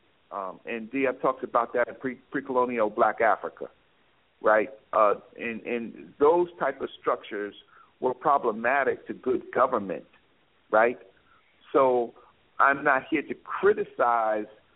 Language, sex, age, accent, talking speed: English, male, 50-69, American, 130 wpm